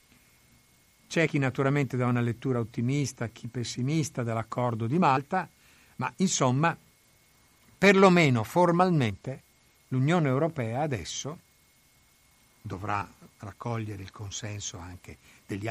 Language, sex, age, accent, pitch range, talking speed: Italian, male, 60-79, native, 110-145 Hz, 95 wpm